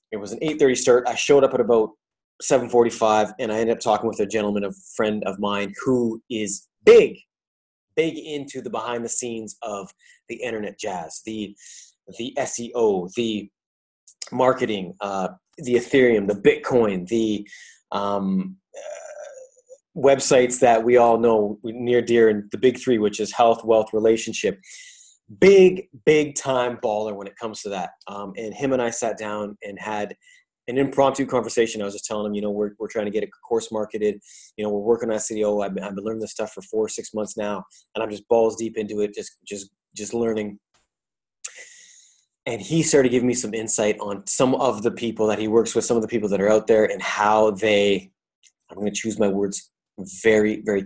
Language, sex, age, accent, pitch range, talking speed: English, male, 30-49, American, 105-125 Hz, 195 wpm